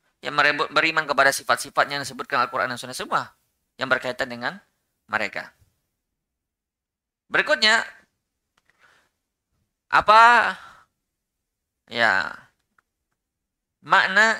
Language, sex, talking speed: Indonesian, male, 80 wpm